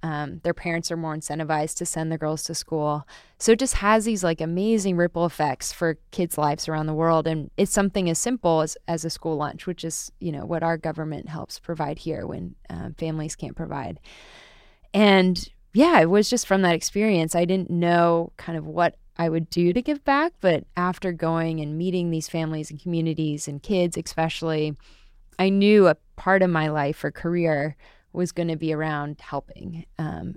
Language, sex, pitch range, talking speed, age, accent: English, female, 155-180 Hz, 200 wpm, 20-39, American